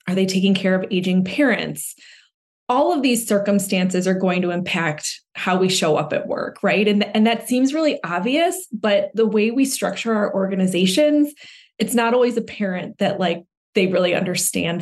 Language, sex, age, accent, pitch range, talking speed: English, female, 20-39, American, 175-210 Hz, 180 wpm